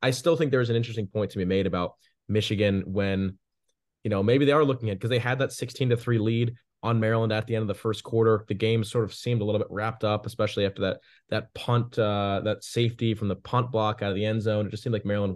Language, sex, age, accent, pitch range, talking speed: English, male, 20-39, American, 105-125 Hz, 270 wpm